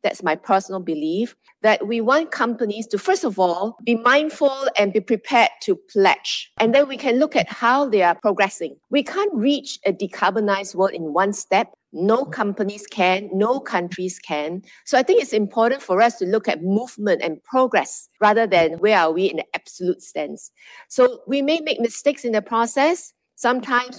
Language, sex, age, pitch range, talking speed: English, female, 50-69, 195-260 Hz, 190 wpm